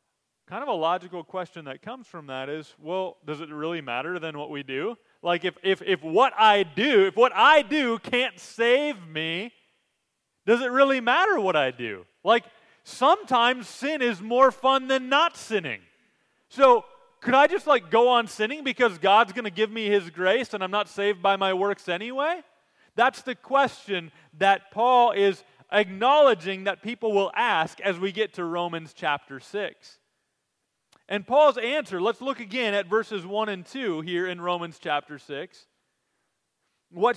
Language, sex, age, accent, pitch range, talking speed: English, male, 30-49, American, 190-260 Hz, 175 wpm